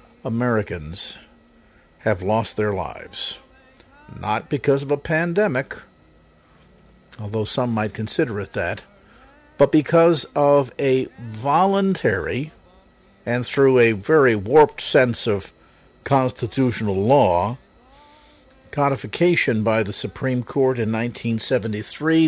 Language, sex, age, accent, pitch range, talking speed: English, male, 50-69, American, 105-140 Hz, 100 wpm